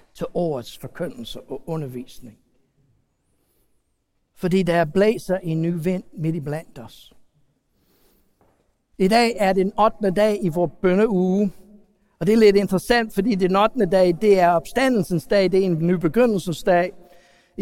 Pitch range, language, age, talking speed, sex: 170-225 Hz, Danish, 60-79, 145 wpm, male